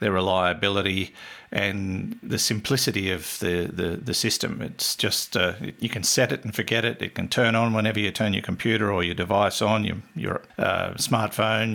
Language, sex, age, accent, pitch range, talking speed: English, male, 50-69, Australian, 95-115 Hz, 190 wpm